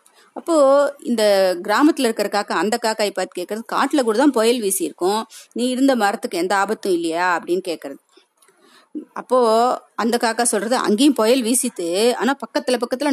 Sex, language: female, Tamil